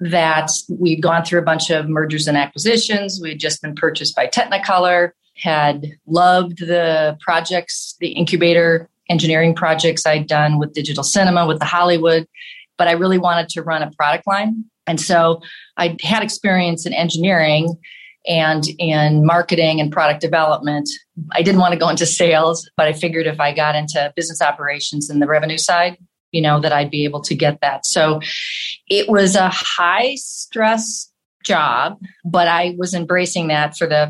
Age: 40-59